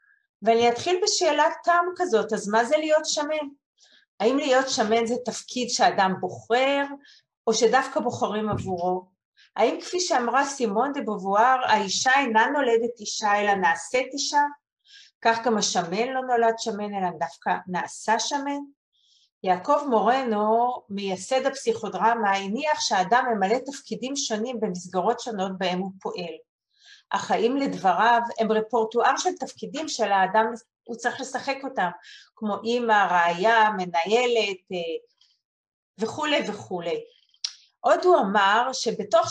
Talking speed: 120 wpm